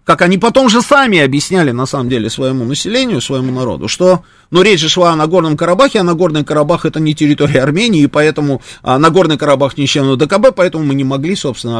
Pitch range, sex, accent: 125-185 Hz, male, native